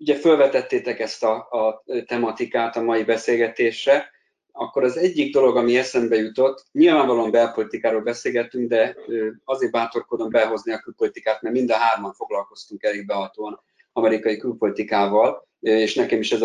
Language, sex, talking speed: Hungarian, male, 140 wpm